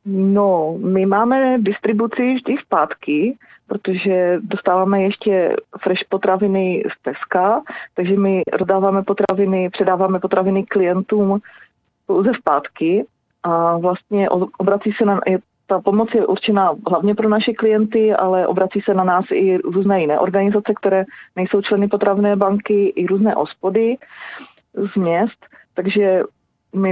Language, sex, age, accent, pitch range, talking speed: Czech, female, 30-49, native, 180-205 Hz, 125 wpm